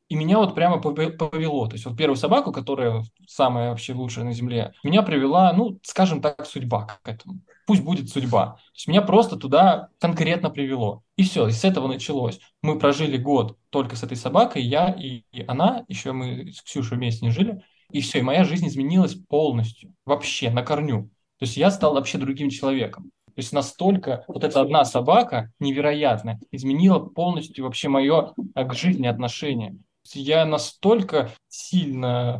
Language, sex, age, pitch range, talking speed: Russian, male, 20-39, 125-165 Hz, 170 wpm